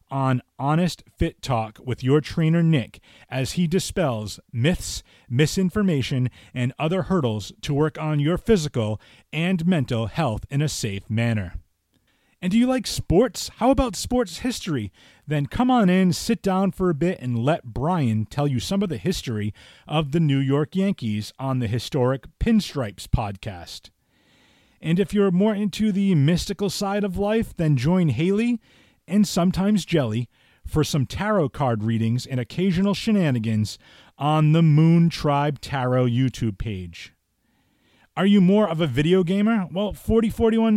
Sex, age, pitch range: male, 30-49, 125-195 Hz